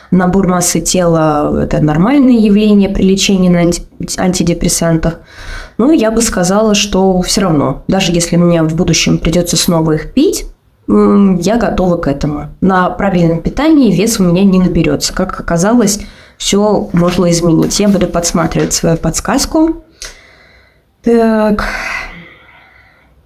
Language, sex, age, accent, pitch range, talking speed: Russian, female, 20-39, native, 175-215 Hz, 130 wpm